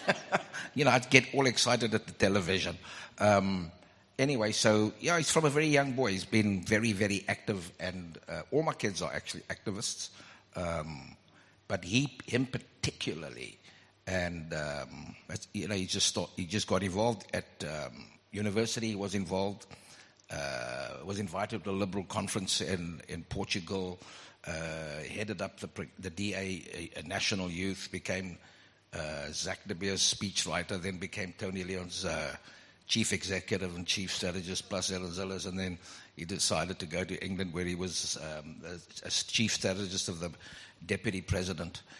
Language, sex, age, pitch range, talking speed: English, male, 60-79, 90-110 Hz, 165 wpm